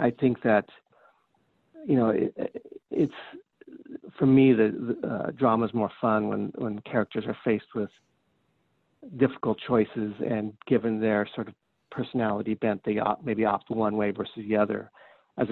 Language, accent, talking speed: English, American, 160 wpm